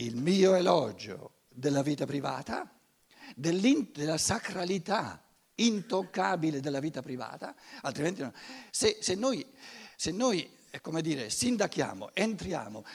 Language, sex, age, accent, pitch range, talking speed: Italian, male, 60-79, native, 150-215 Hz, 90 wpm